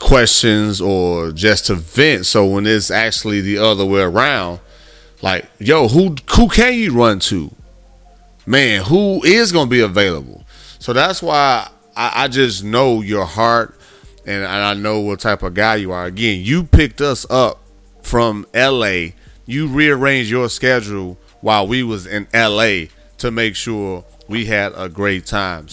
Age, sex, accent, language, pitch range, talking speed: 30-49, male, American, English, 100-130 Hz, 165 wpm